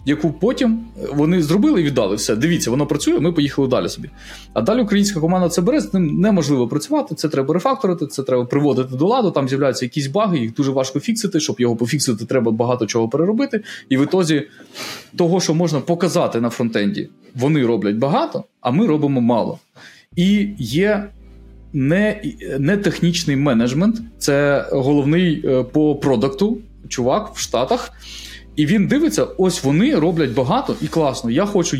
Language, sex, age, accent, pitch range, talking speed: Ukrainian, male, 20-39, native, 125-175 Hz, 165 wpm